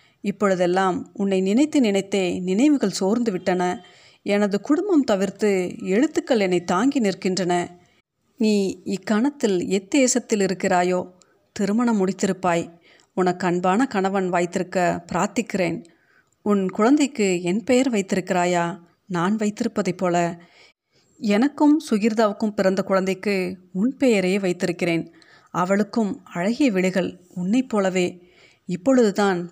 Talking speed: 95 wpm